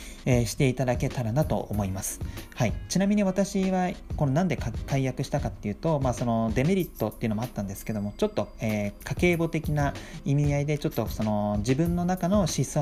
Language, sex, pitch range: Japanese, male, 110-155 Hz